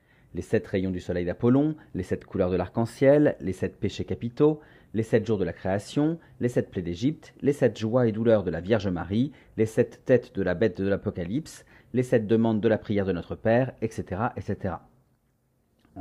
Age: 40-59